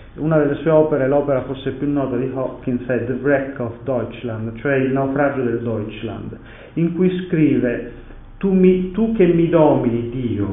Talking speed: 160 wpm